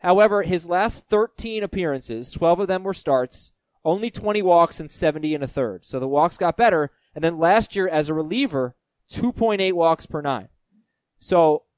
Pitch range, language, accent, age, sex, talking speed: 125-170 Hz, English, American, 20-39, male, 180 wpm